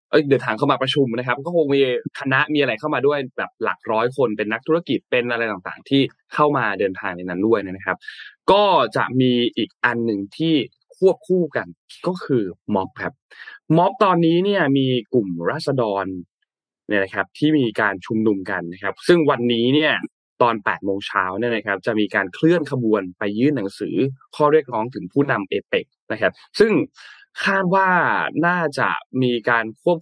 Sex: male